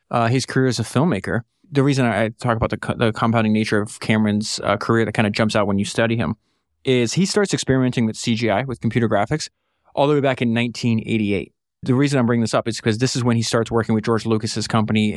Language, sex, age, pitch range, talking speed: English, male, 20-39, 115-150 Hz, 245 wpm